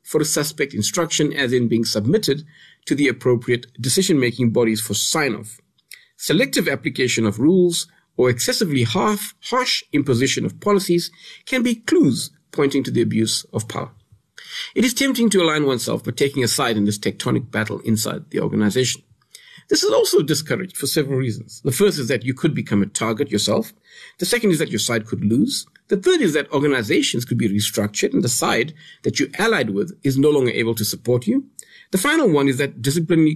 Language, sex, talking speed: English, male, 190 wpm